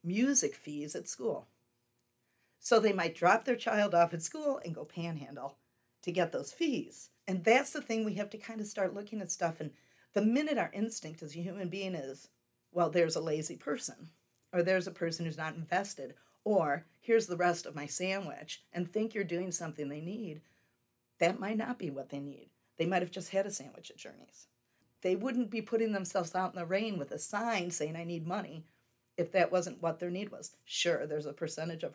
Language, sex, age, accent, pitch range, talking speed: English, female, 40-59, American, 155-195 Hz, 210 wpm